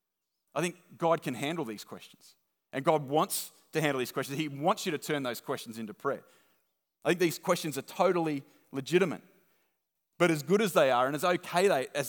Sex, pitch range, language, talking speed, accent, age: male, 125-165 Hz, English, 200 wpm, Australian, 30-49